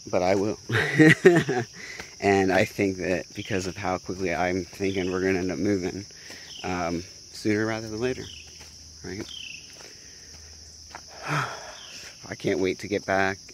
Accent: American